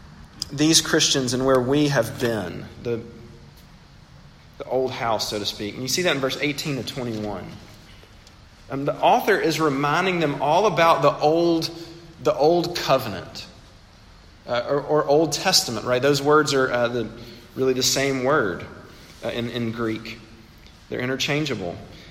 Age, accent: 40-59, American